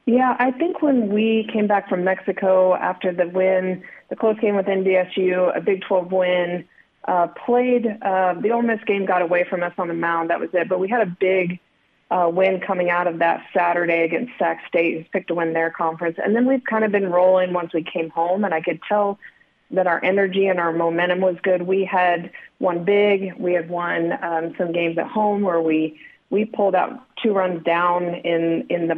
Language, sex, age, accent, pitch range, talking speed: English, female, 30-49, American, 170-200 Hz, 215 wpm